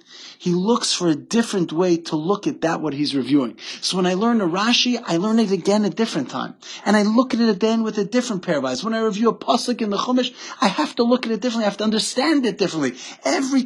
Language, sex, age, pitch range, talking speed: English, male, 30-49, 180-250 Hz, 270 wpm